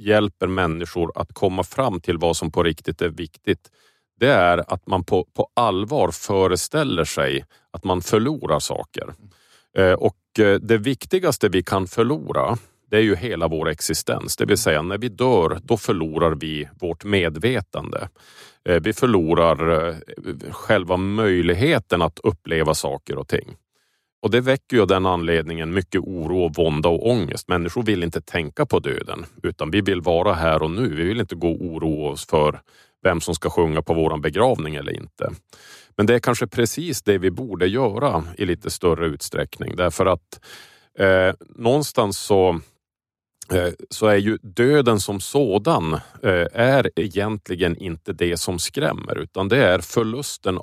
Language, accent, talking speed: Swedish, Norwegian, 155 wpm